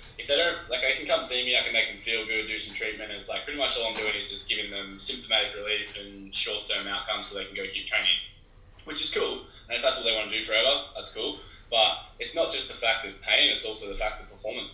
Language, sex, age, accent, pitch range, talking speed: English, male, 10-29, Australian, 100-115 Hz, 285 wpm